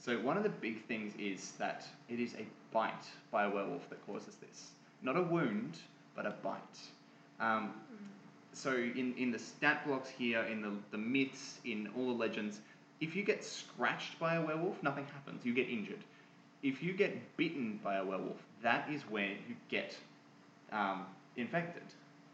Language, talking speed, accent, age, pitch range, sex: English, 175 wpm, Australian, 20-39, 110-145 Hz, male